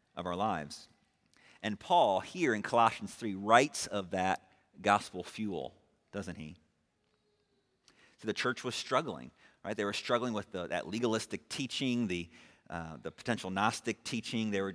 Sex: male